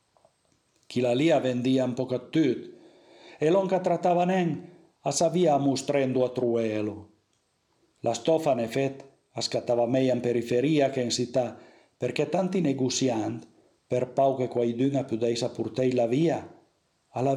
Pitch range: 120-150 Hz